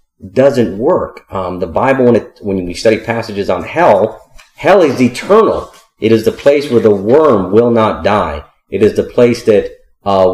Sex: male